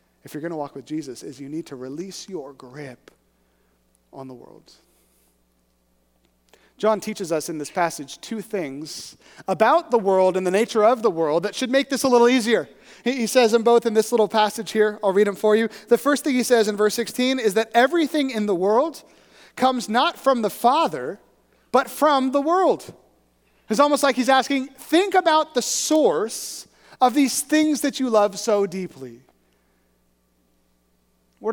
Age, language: 30-49, English